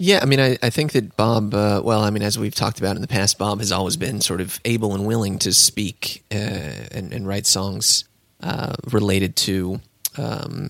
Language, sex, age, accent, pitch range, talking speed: English, male, 20-39, American, 95-115 Hz, 220 wpm